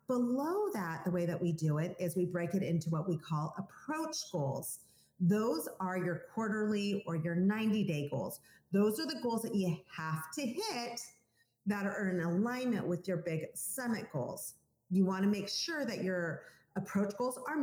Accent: American